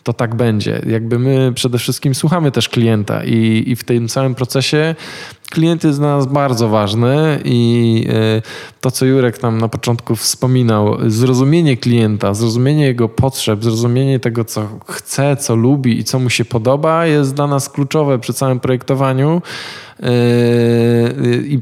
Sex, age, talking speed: male, 20-39, 150 wpm